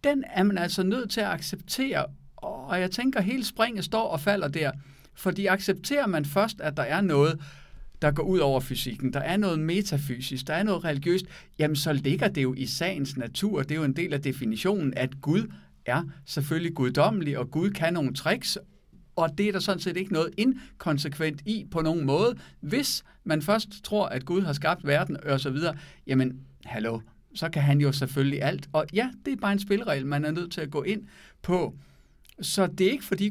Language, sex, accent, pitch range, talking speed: Danish, male, native, 140-195 Hz, 215 wpm